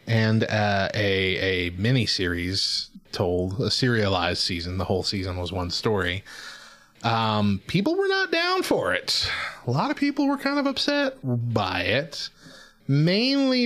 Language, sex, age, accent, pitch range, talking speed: English, male, 30-49, American, 100-145 Hz, 145 wpm